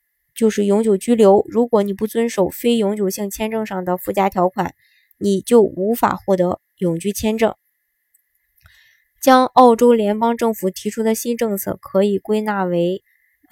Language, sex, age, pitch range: Chinese, male, 20-39, 190-230 Hz